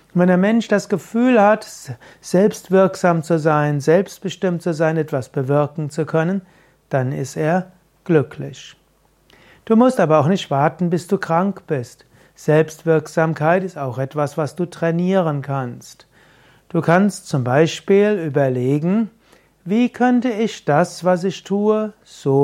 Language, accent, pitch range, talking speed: German, German, 150-195 Hz, 135 wpm